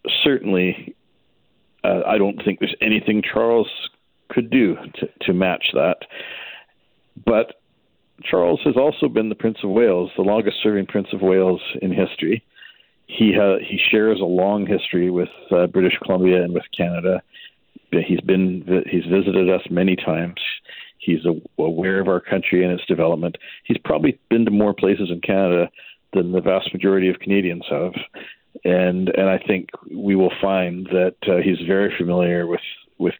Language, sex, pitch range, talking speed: English, male, 90-100 Hz, 160 wpm